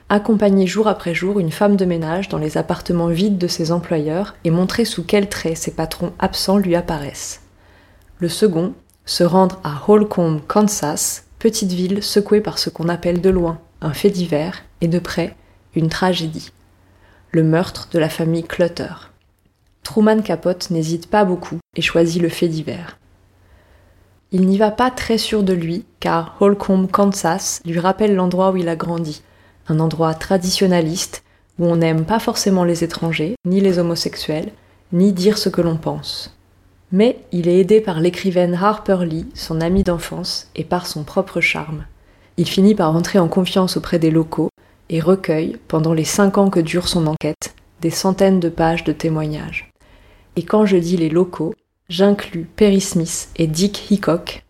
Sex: female